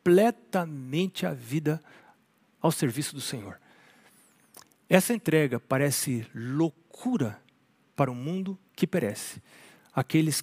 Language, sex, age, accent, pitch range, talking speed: Portuguese, male, 60-79, Brazilian, 135-185 Hz, 105 wpm